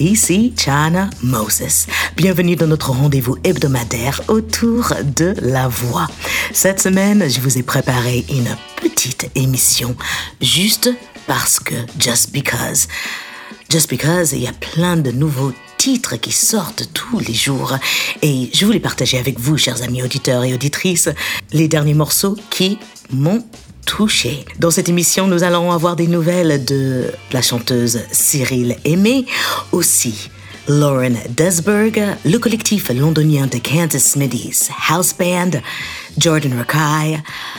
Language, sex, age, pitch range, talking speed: French, female, 50-69, 125-175 Hz, 135 wpm